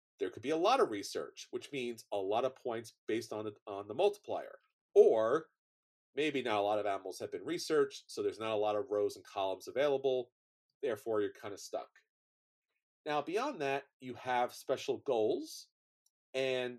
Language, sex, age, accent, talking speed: English, male, 40-59, American, 180 wpm